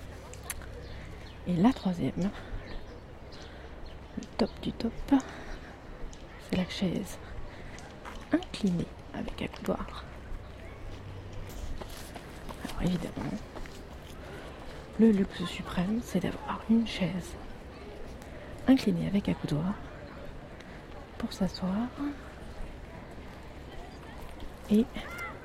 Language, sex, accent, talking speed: French, female, French, 70 wpm